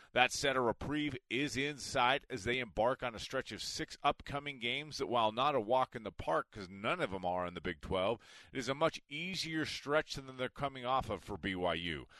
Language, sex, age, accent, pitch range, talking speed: English, male, 30-49, American, 115-145 Hz, 230 wpm